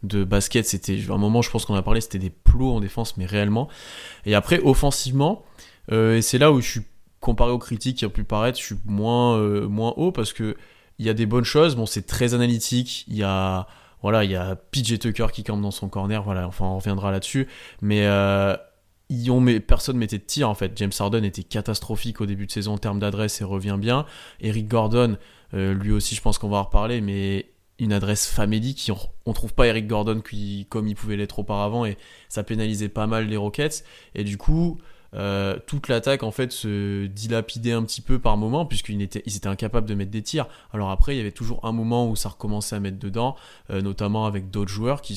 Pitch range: 100-120 Hz